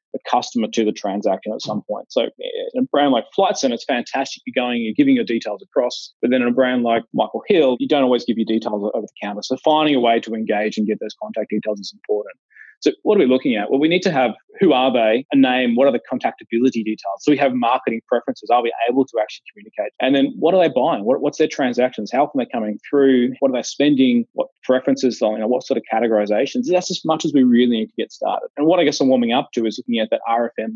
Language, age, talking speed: English, 20-39, 265 wpm